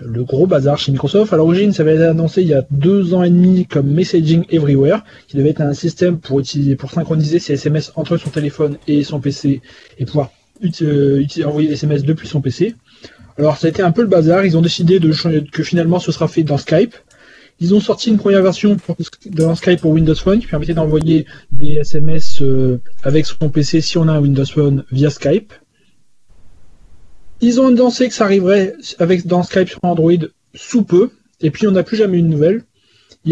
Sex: male